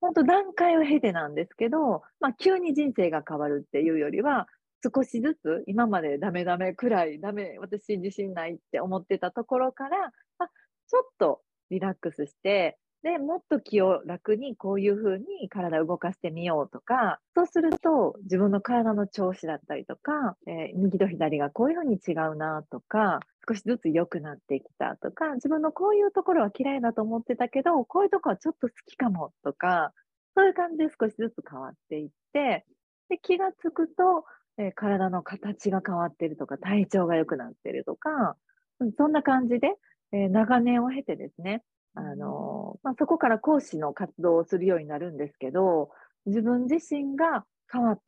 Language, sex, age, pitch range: Japanese, female, 40-59, 180-300 Hz